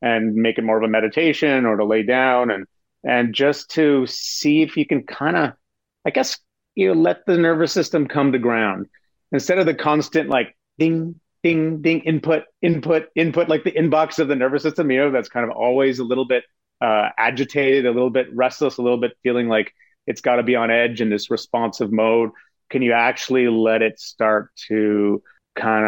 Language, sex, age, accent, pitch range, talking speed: English, male, 30-49, American, 120-155 Hz, 205 wpm